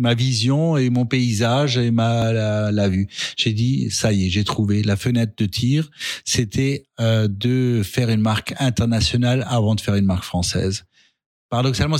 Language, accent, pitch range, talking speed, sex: French, French, 110-135 Hz, 175 wpm, male